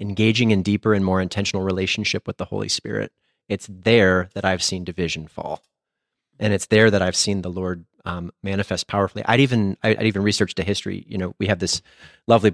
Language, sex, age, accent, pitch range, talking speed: English, male, 30-49, American, 95-110 Hz, 200 wpm